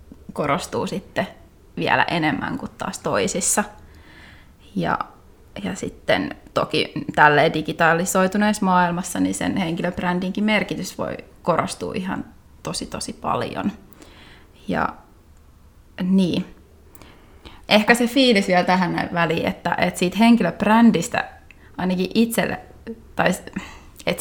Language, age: Finnish, 20-39